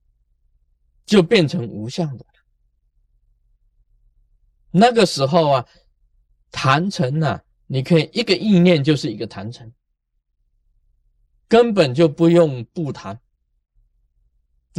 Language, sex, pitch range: Chinese, male, 105-170 Hz